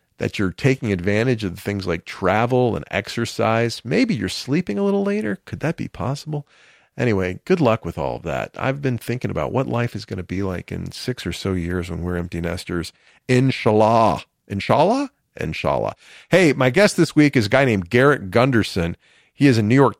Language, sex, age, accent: English, male, 40-59, American